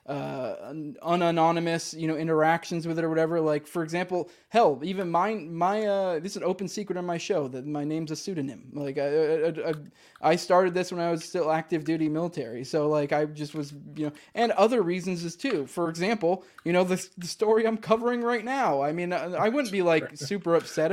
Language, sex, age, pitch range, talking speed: English, male, 20-39, 155-185 Hz, 215 wpm